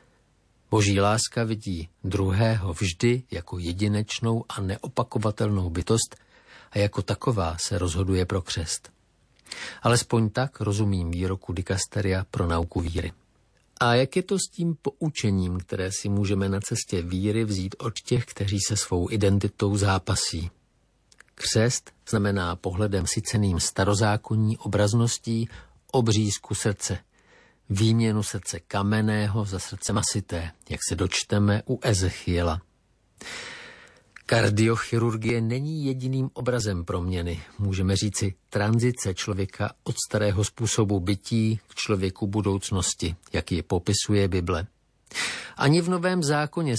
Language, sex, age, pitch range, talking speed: Slovak, male, 50-69, 95-115 Hz, 115 wpm